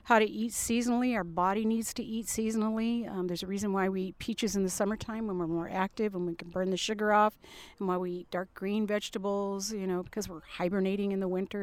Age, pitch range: 50-69, 185-225 Hz